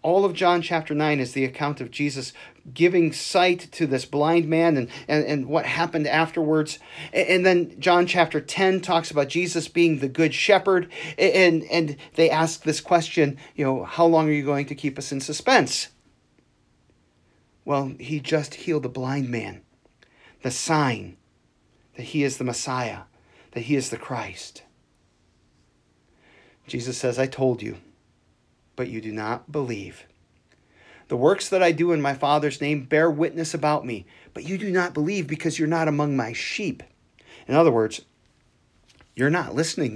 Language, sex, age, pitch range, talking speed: English, male, 40-59, 130-165 Hz, 165 wpm